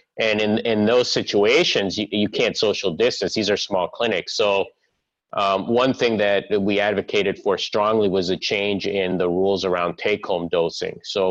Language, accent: English, American